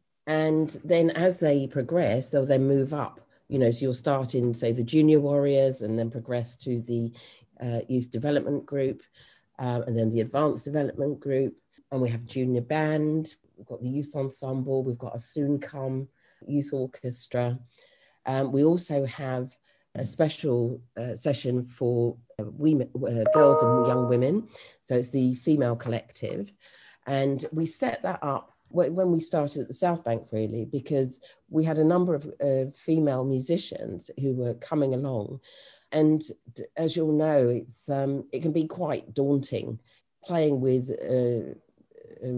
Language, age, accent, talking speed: English, 40-59, British, 160 wpm